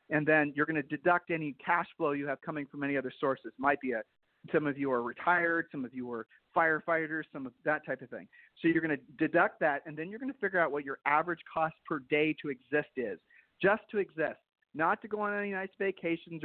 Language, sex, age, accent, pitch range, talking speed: English, male, 40-59, American, 145-190 Hz, 245 wpm